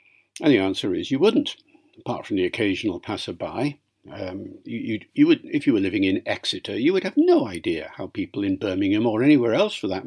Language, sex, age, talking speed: English, male, 60-79, 190 wpm